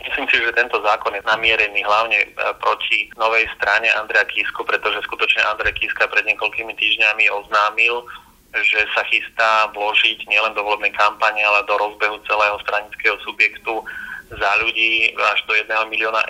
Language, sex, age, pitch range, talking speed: Slovak, male, 30-49, 105-110 Hz, 150 wpm